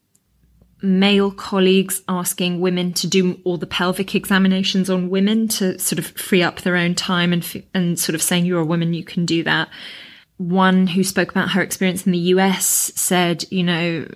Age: 20-39